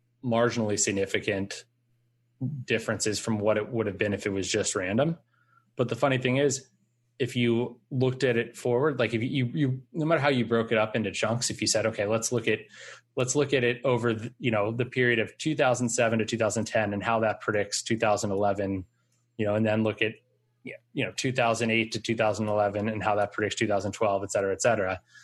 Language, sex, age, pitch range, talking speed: English, male, 20-39, 110-125 Hz, 195 wpm